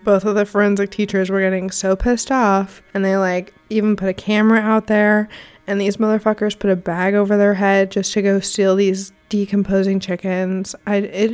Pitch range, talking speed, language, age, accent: 190-215 Hz, 195 wpm, English, 20-39, American